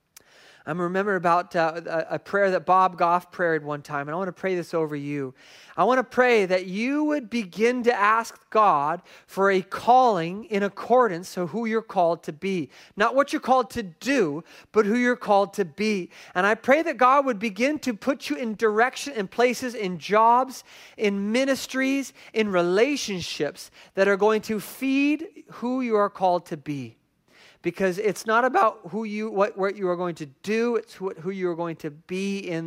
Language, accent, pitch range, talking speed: English, American, 175-230 Hz, 195 wpm